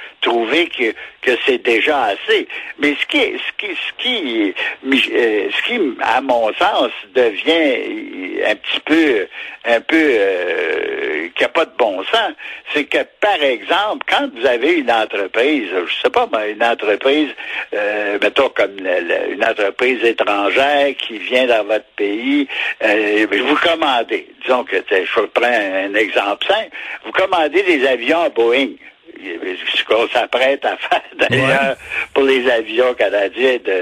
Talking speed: 150 wpm